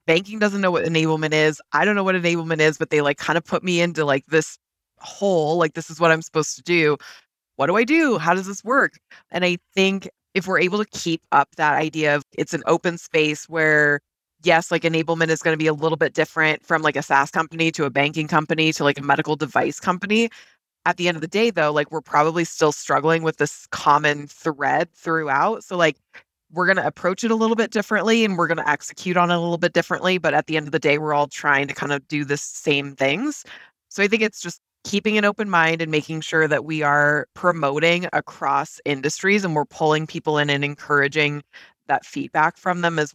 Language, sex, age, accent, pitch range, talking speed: English, female, 20-39, American, 150-175 Hz, 235 wpm